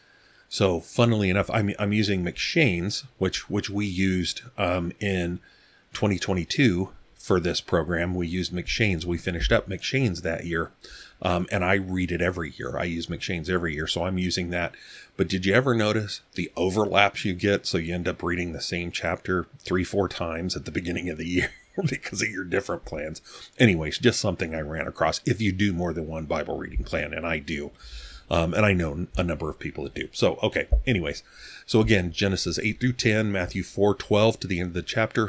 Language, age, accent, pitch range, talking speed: English, 40-59, American, 85-110 Hz, 200 wpm